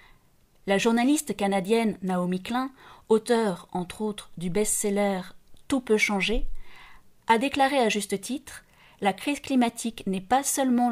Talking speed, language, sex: 130 wpm, French, female